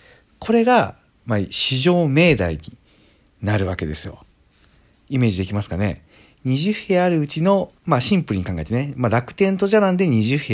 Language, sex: Japanese, male